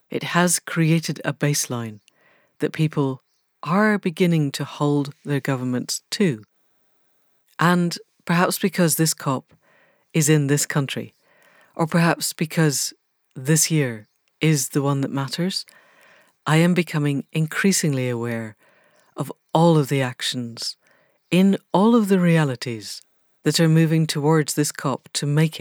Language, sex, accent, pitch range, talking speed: English, female, British, 135-170 Hz, 130 wpm